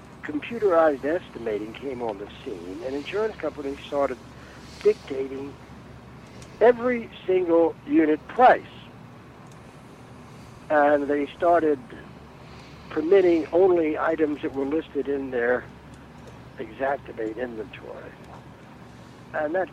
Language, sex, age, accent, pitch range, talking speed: English, male, 60-79, American, 135-180 Hz, 90 wpm